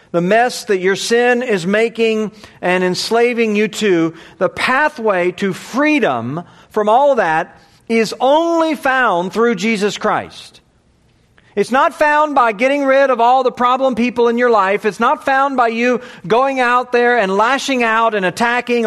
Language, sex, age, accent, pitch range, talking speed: English, male, 40-59, American, 170-240 Hz, 165 wpm